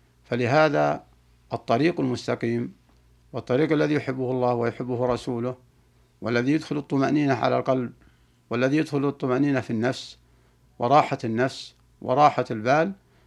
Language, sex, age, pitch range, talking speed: Arabic, male, 60-79, 100-135 Hz, 105 wpm